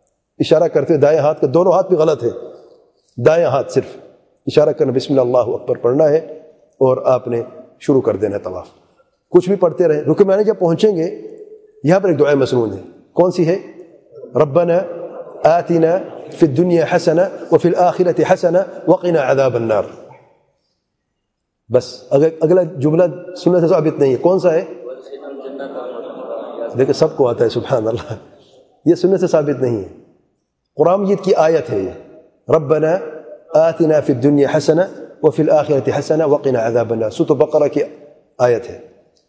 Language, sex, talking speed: English, male, 115 wpm